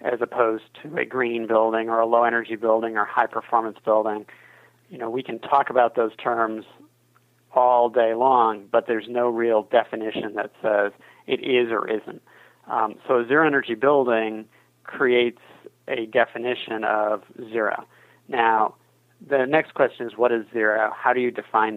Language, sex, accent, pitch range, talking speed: English, male, American, 110-125 Hz, 155 wpm